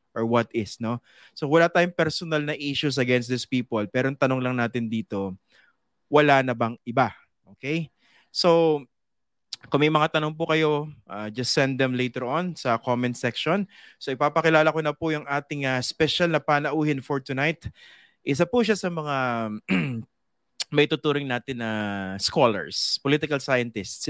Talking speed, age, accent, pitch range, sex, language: 160 wpm, 20-39, Filipino, 110-145 Hz, male, English